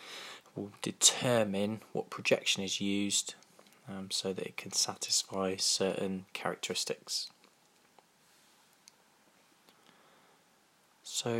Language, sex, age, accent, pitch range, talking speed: English, male, 20-39, British, 95-115 Hz, 80 wpm